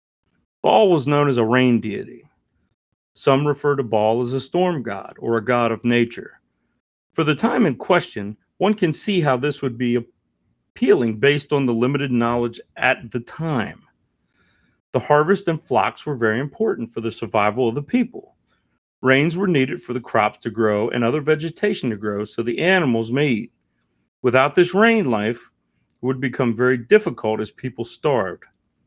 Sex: male